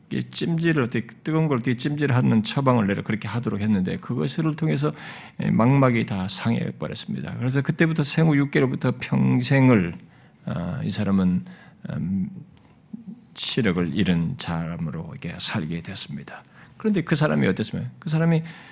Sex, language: male, Korean